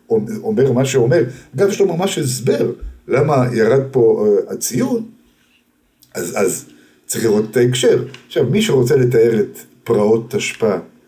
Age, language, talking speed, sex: 50-69, Hebrew, 140 wpm, male